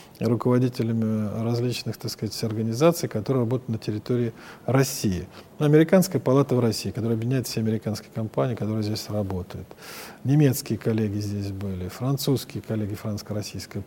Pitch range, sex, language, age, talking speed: 110-135 Hz, male, Russian, 40-59, 125 wpm